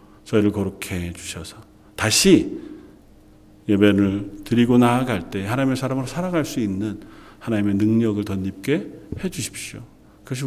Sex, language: male, Korean